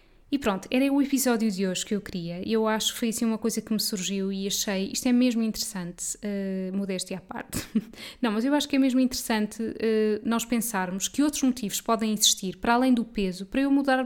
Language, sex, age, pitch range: Portuguese, female, 10-29, 200-245 Hz